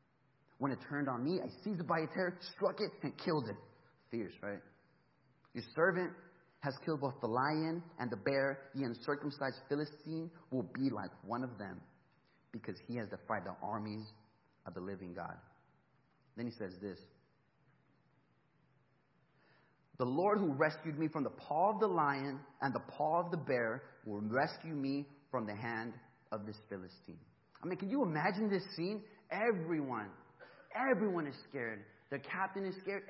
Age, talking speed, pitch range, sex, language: 30-49, 165 wpm, 125-175 Hz, male, English